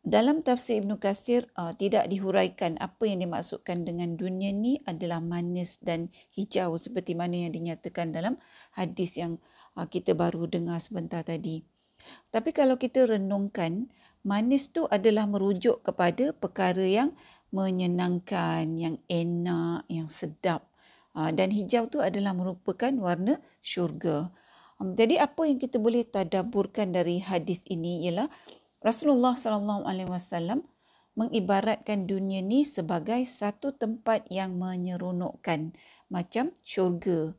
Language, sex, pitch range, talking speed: Malay, female, 175-230 Hz, 120 wpm